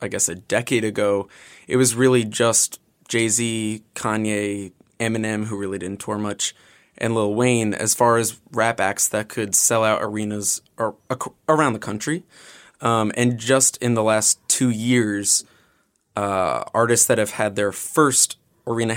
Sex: male